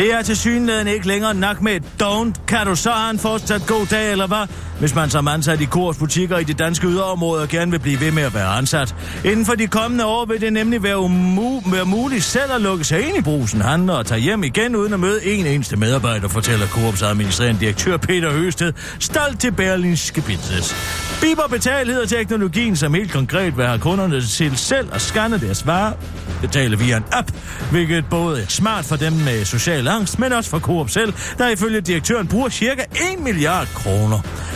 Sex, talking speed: male, 205 wpm